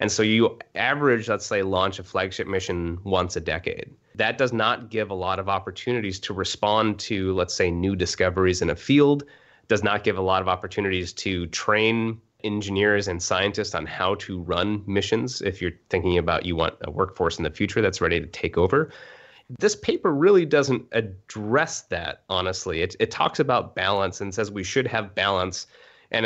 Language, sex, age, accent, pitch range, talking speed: English, male, 30-49, American, 95-115 Hz, 190 wpm